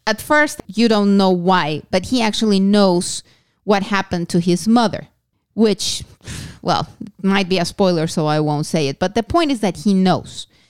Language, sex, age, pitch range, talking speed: English, female, 30-49, 180-235 Hz, 185 wpm